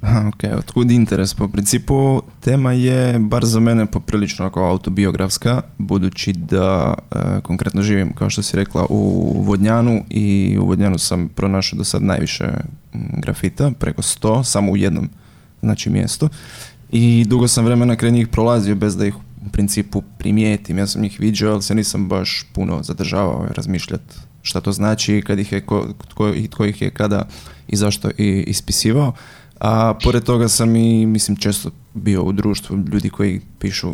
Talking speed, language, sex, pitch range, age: 155 wpm, Croatian, male, 100-115 Hz, 20-39